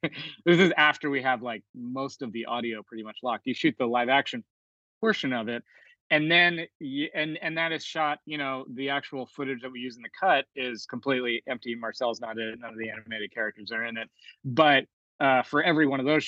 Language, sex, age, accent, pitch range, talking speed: English, male, 20-39, American, 115-135 Hz, 225 wpm